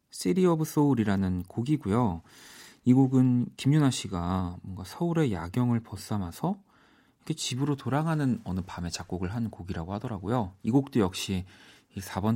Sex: male